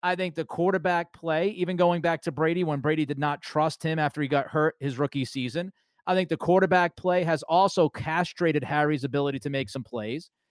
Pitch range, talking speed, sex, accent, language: 150-190 Hz, 210 wpm, male, American, English